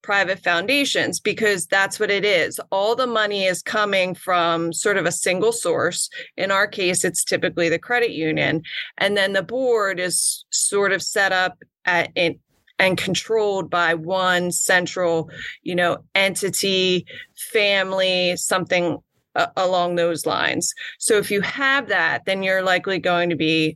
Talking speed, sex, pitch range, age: 155 wpm, female, 170-205 Hz, 30-49